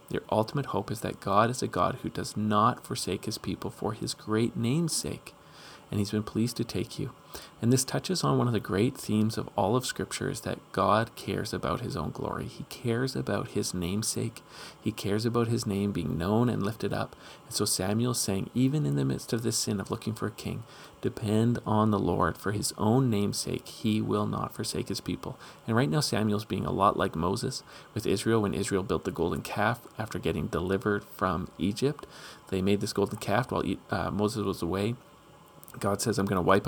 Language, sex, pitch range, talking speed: English, male, 100-115 Hz, 215 wpm